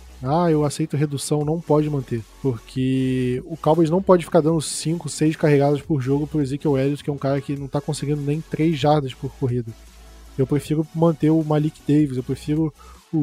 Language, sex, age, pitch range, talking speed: Portuguese, male, 20-39, 135-160 Hz, 205 wpm